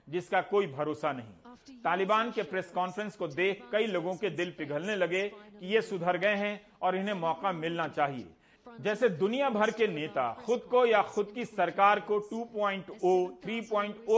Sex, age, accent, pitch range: male, 40-59, native, 170-210 Hz